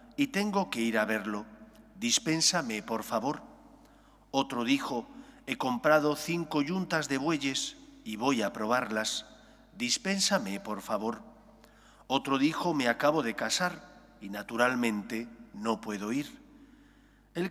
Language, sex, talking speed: English, male, 125 wpm